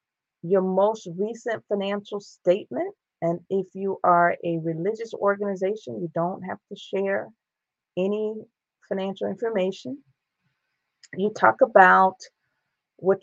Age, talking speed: 40-59, 110 wpm